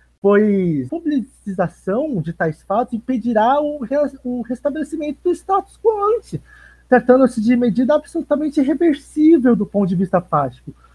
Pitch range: 195-295 Hz